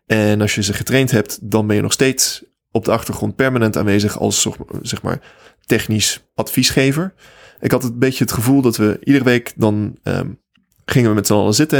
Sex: male